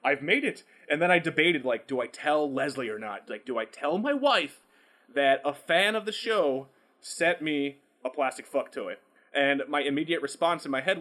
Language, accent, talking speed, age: English, American, 215 wpm, 30-49